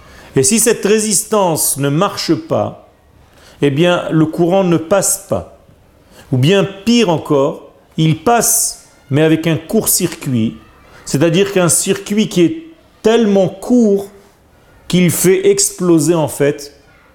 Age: 40-59